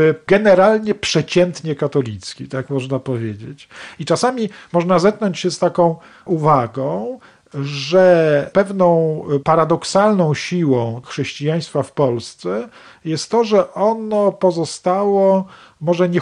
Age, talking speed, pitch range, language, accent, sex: 40-59, 105 wpm, 135-175 Hz, Polish, native, male